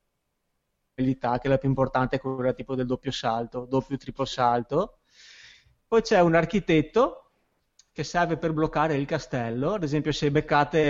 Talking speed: 150 wpm